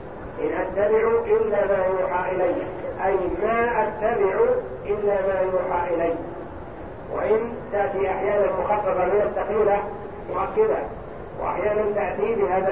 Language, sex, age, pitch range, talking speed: Arabic, male, 50-69, 180-215 Hz, 110 wpm